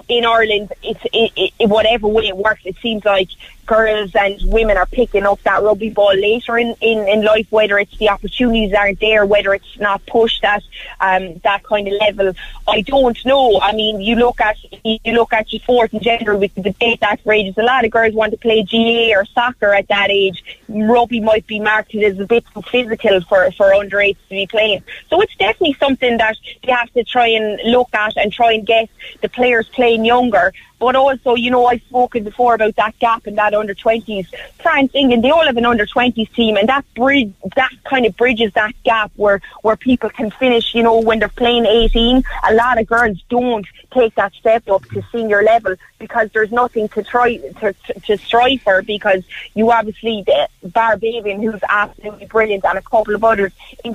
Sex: female